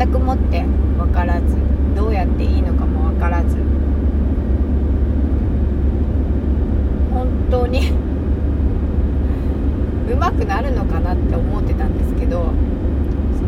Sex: female